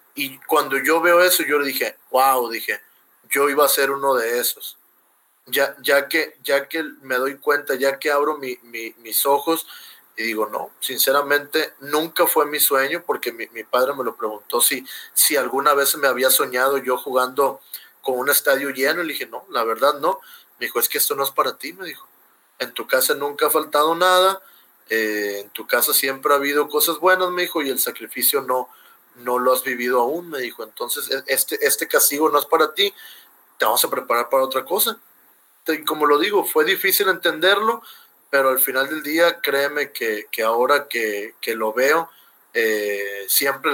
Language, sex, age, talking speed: Spanish, male, 20-39, 195 wpm